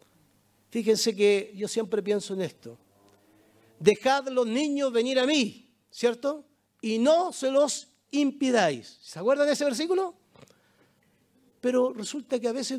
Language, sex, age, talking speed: Spanish, male, 50-69, 135 wpm